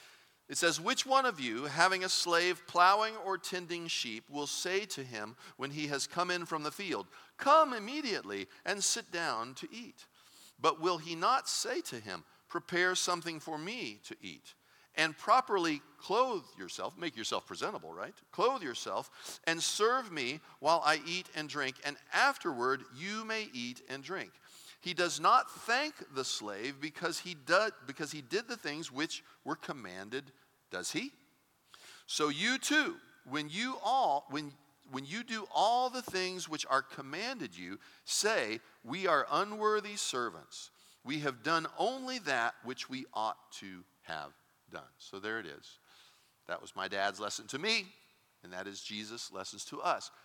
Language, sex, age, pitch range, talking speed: English, male, 40-59, 135-215 Hz, 165 wpm